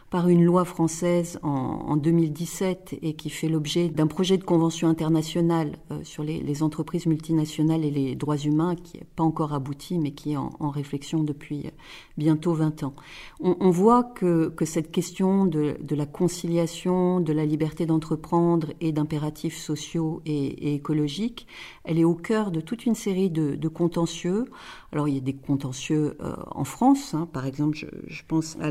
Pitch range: 150-175 Hz